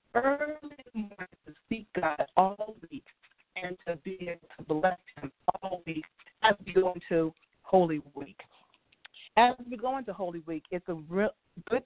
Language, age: English, 40-59